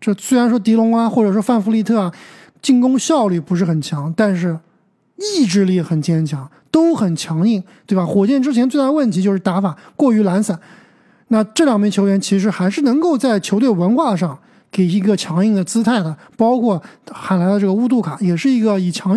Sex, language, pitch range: male, Chinese, 185-230 Hz